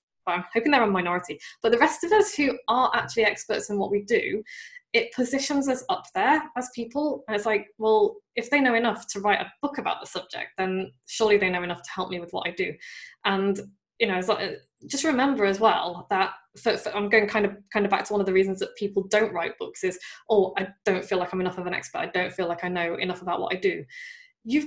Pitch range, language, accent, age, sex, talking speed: 200-275 Hz, English, British, 10-29, female, 245 wpm